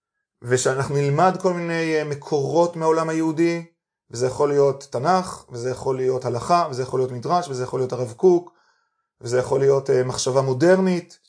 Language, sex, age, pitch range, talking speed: Hebrew, male, 20-39, 130-180 Hz, 155 wpm